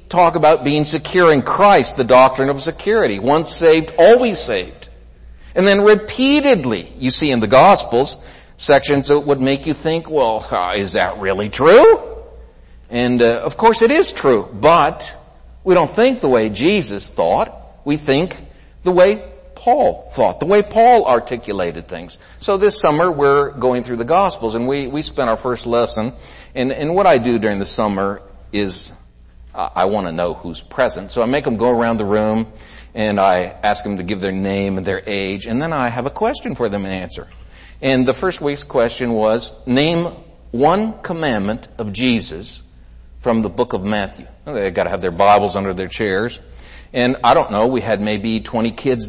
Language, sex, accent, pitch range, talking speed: English, male, American, 105-165 Hz, 185 wpm